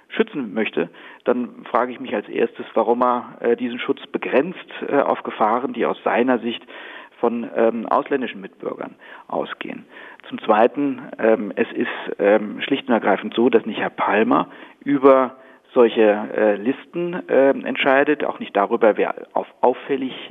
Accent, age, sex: German, 40-59, male